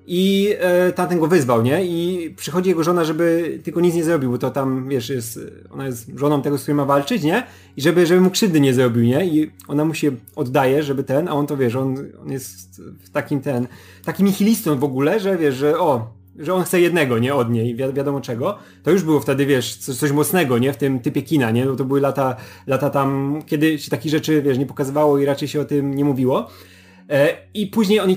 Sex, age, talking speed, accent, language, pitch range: male, 30-49, 230 wpm, native, Polish, 140-175 Hz